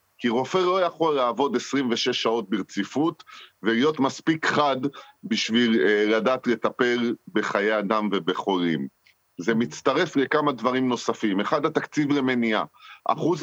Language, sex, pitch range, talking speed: Hebrew, male, 115-150 Hz, 115 wpm